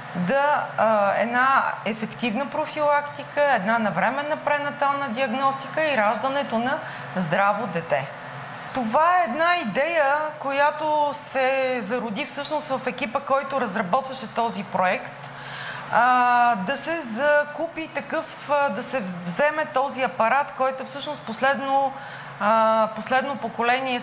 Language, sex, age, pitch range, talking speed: Bulgarian, female, 20-39, 230-290 Hz, 115 wpm